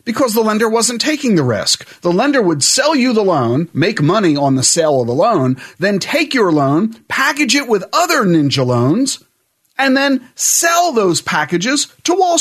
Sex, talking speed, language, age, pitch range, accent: male, 190 wpm, English, 40-59, 145-220 Hz, American